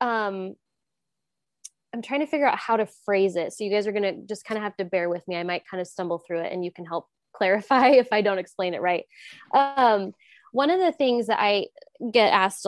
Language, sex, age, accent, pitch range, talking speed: English, female, 20-39, American, 190-245 Hz, 240 wpm